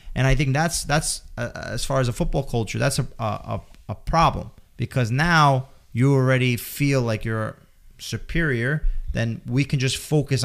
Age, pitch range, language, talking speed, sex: 20-39, 105-135 Hz, English, 170 wpm, male